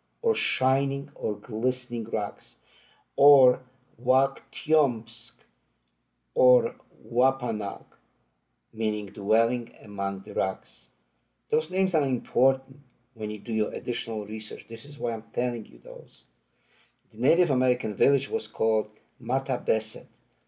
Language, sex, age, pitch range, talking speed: English, male, 50-69, 110-145 Hz, 110 wpm